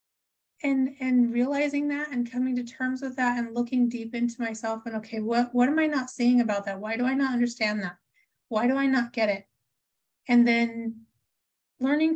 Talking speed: 195 wpm